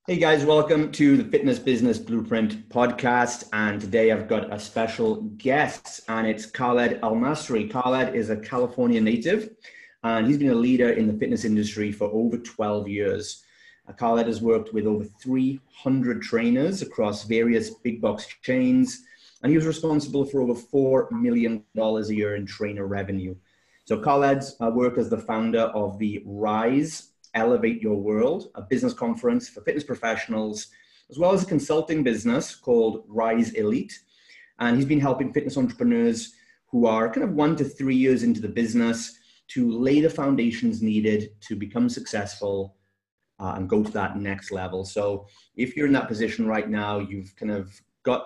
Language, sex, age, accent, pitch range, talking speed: English, male, 30-49, British, 105-160 Hz, 170 wpm